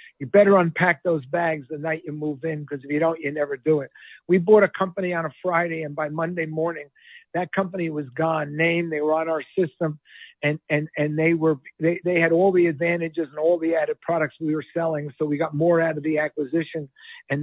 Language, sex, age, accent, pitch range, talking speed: English, male, 50-69, American, 145-165 Hz, 220 wpm